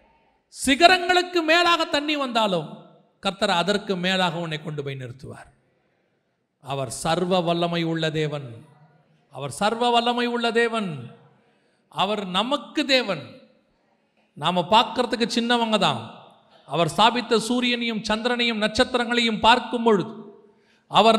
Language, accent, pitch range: Tamil, native, 160-240 Hz